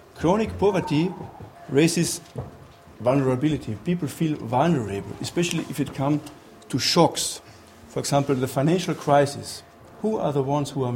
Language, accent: German, German